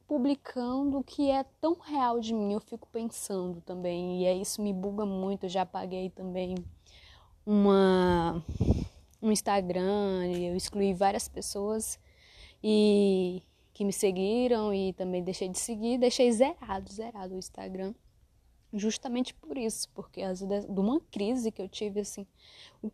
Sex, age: female, 10-29